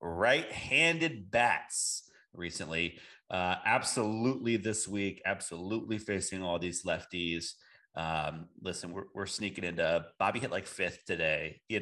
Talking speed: 120 wpm